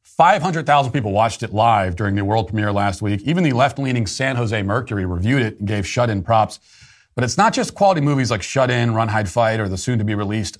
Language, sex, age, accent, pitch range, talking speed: English, male, 40-59, American, 105-135 Hz, 215 wpm